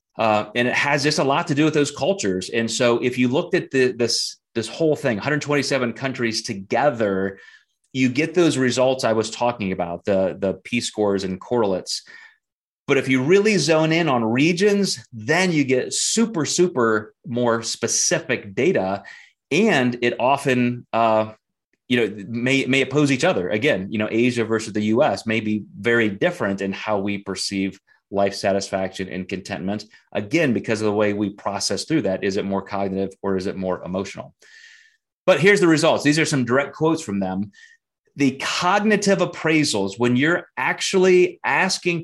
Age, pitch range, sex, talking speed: 30-49, 110-150 Hz, male, 175 wpm